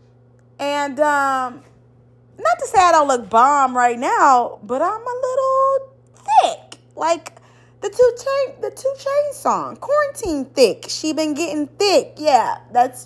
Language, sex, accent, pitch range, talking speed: English, female, American, 215-310 Hz, 145 wpm